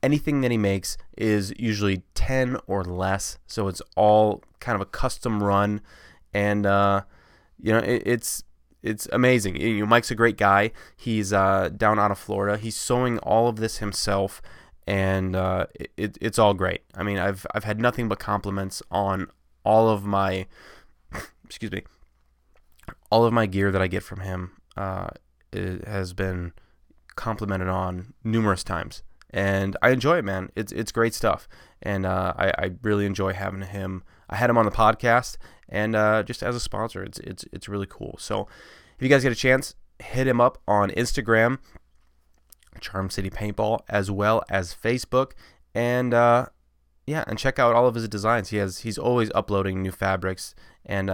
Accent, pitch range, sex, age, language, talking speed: American, 95-115 Hz, male, 20-39, English, 175 wpm